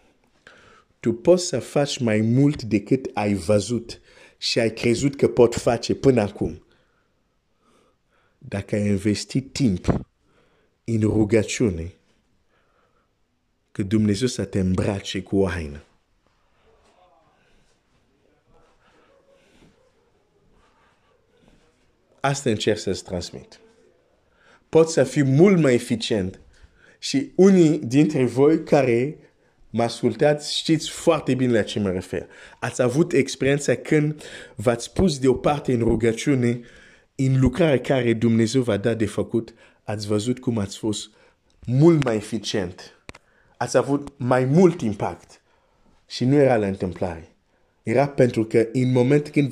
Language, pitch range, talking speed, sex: Romanian, 105-135 Hz, 115 wpm, male